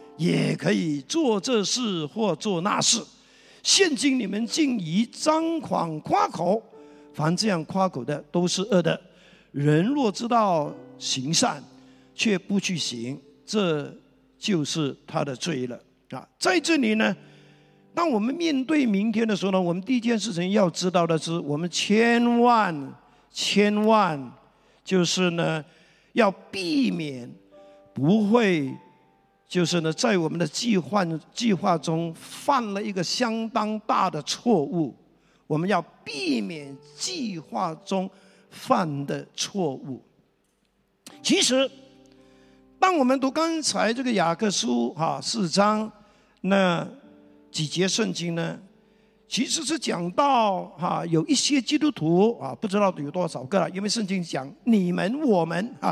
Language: Chinese